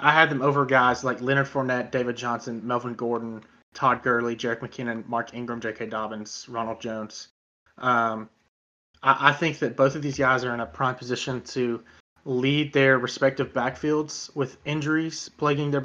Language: English